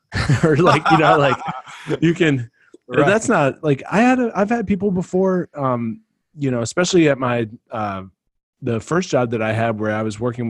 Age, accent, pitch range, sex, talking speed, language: 30-49, American, 100-145 Hz, male, 200 wpm, English